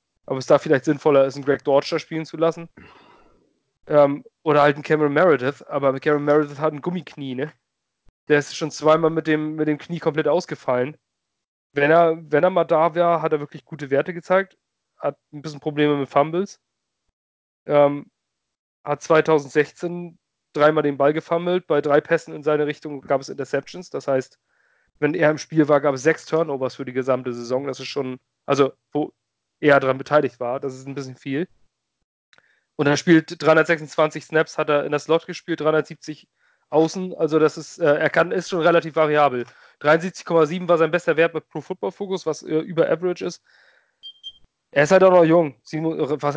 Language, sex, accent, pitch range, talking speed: German, male, German, 140-160 Hz, 180 wpm